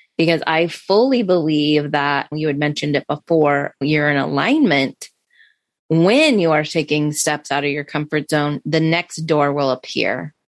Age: 20-39